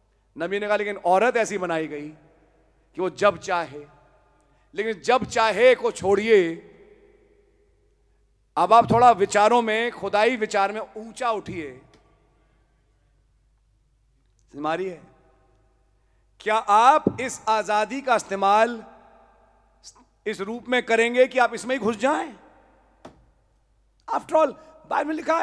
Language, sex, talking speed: English, male, 115 wpm